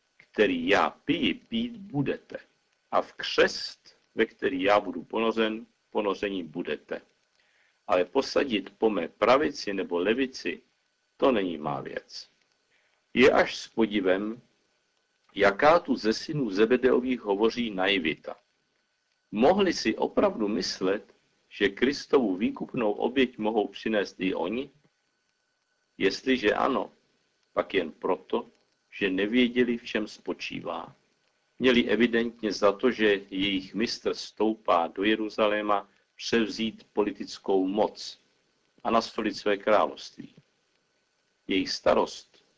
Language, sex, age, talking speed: Czech, male, 50-69, 110 wpm